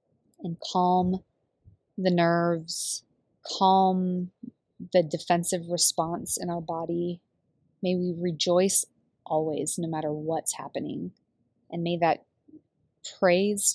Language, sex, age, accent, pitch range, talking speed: English, female, 20-39, American, 165-190 Hz, 100 wpm